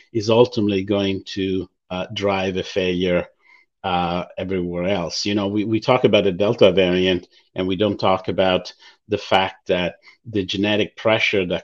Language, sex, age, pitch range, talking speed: English, male, 50-69, 95-120 Hz, 165 wpm